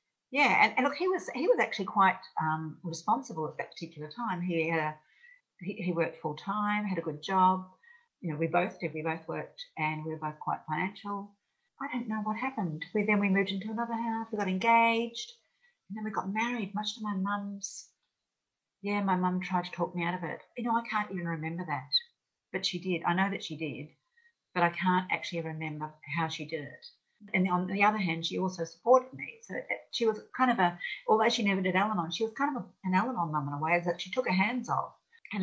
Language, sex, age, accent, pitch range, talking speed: English, female, 50-69, Australian, 165-220 Hz, 230 wpm